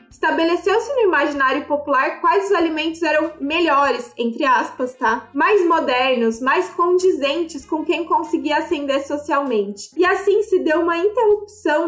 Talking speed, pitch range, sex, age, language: 135 wpm, 280-365 Hz, female, 20-39, Portuguese